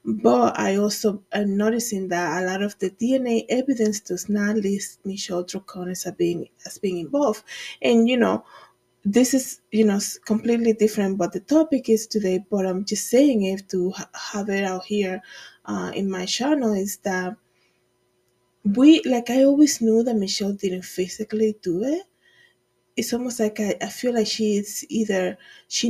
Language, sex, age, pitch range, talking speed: English, female, 20-39, 190-230 Hz, 170 wpm